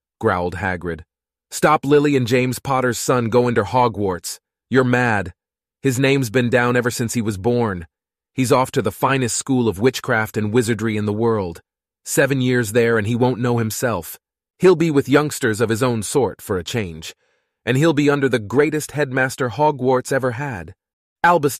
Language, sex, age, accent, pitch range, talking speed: English, male, 30-49, American, 110-130 Hz, 180 wpm